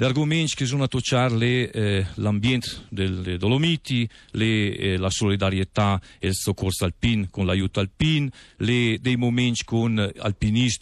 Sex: male